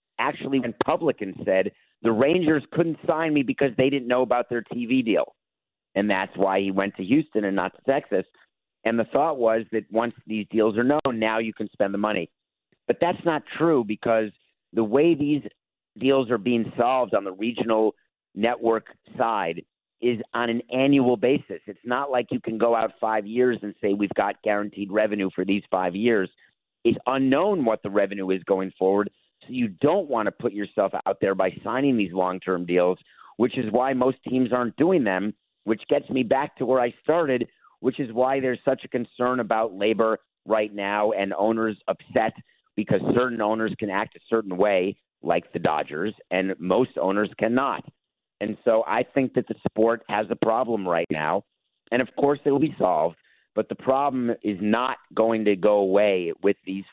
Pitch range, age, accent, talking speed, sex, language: 100-130 Hz, 50-69, American, 190 wpm, male, English